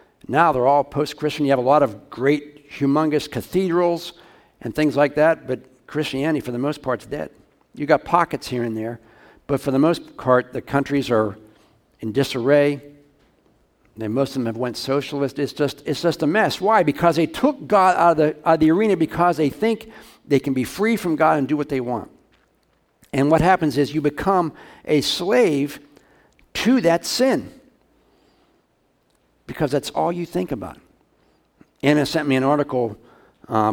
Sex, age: male, 60-79